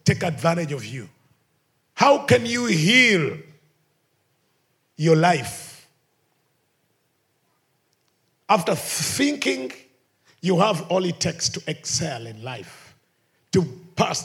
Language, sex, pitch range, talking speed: English, male, 135-170 Hz, 95 wpm